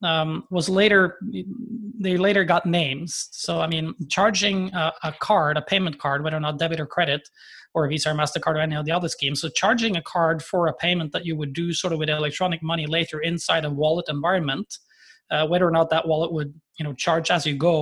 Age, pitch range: 20-39, 150-175 Hz